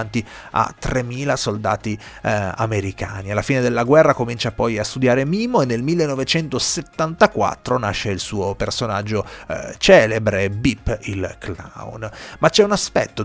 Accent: native